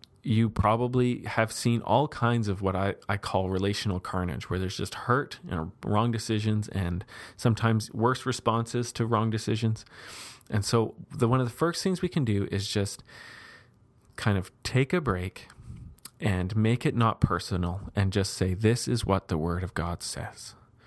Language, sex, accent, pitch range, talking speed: English, male, American, 100-120 Hz, 175 wpm